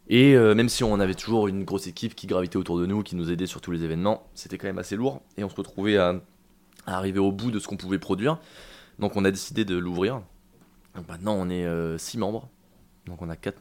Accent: French